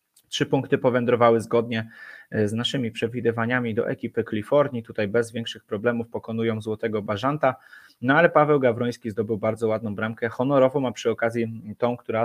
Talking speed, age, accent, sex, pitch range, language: 150 wpm, 20-39, native, male, 110-130 Hz, Polish